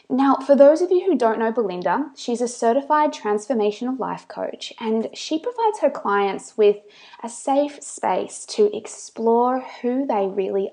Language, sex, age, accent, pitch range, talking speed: English, female, 20-39, Australian, 200-250 Hz, 160 wpm